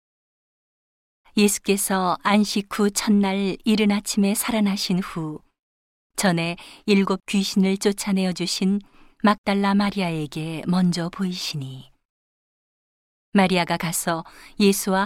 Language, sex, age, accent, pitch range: Korean, female, 40-59, native, 175-205 Hz